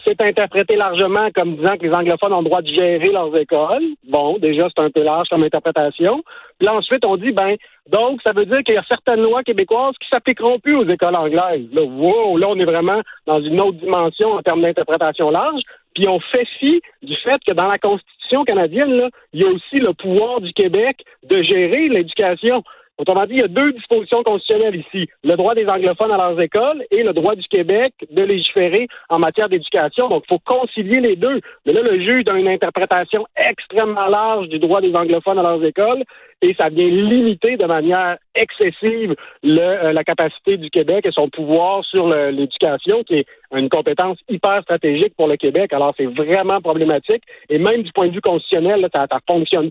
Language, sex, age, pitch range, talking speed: French, male, 50-69, 170-250 Hz, 205 wpm